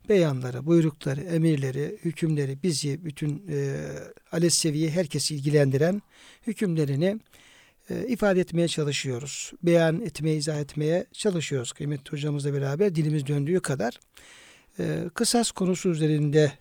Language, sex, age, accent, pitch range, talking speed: Turkish, male, 60-79, native, 150-180 Hz, 110 wpm